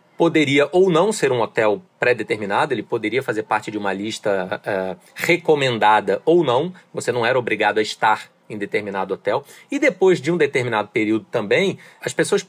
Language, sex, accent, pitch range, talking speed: Portuguese, male, Brazilian, 130-190 Hz, 170 wpm